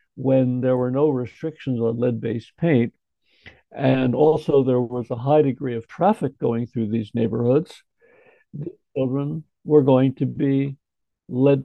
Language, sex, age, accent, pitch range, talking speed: English, male, 60-79, American, 120-150 Hz, 145 wpm